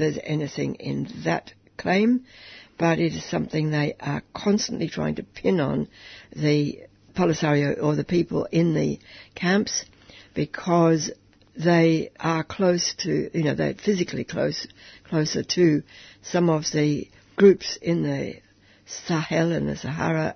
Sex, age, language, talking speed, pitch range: female, 60-79, English, 135 wpm, 105-170 Hz